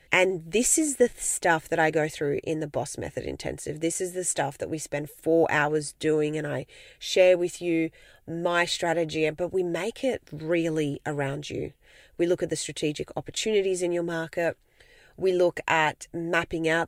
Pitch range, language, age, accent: 150-185 Hz, English, 30-49, Australian